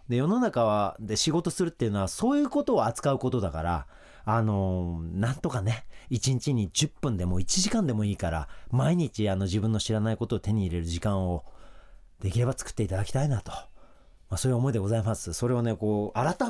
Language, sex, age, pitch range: Japanese, male, 40-59, 90-120 Hz